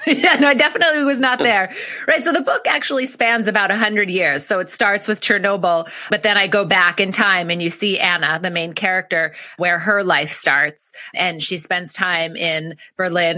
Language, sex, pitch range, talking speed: English, female, 170-225 Hz, 205 wpm